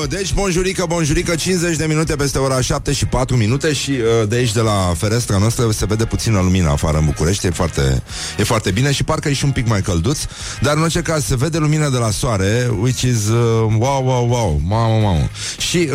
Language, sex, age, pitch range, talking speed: Romanian, male, 30-49, 85-125 Hz, 220 wpm